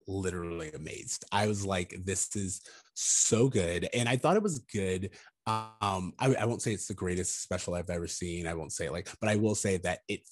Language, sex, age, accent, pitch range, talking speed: English, male, 20-39, American, 95-115 Hz, 220 wpm